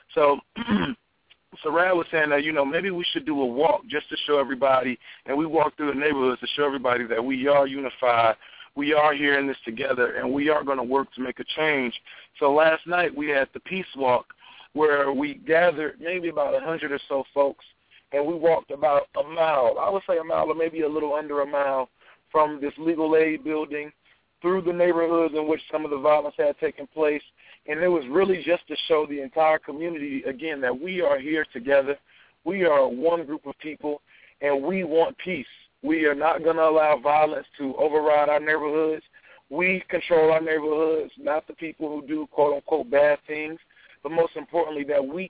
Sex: male